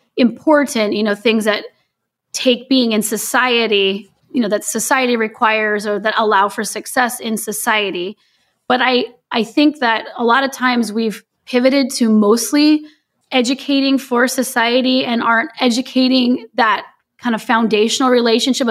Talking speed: 145 wpm